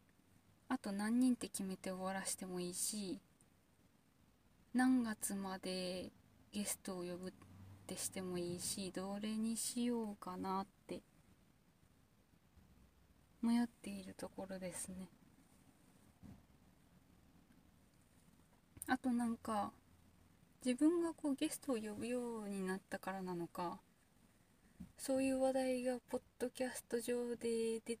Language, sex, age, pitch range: Japanese, female, 20-39, 195-255 Hz